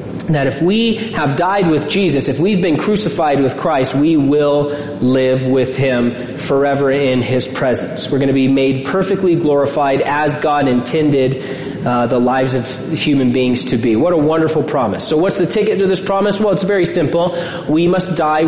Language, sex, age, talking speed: English, male, 30-49, 190 wpm